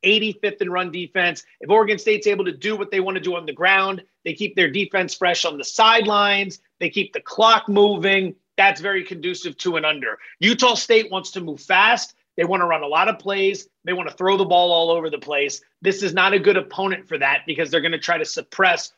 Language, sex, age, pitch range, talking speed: English, male, 30-49, 180-220 Hz, 240 wpm